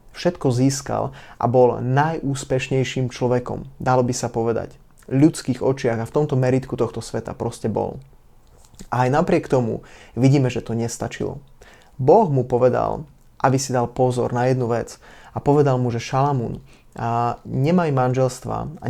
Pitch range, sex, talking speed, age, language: 120-140 Hz, male, 150 wpm, 20-39, Slovak